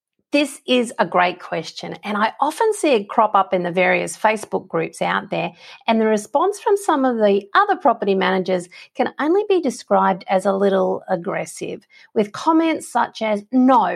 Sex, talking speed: female, 180 wpm